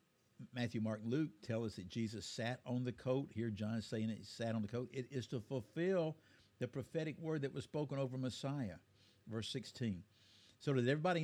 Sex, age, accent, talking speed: male, 50-69, American, 200 wpm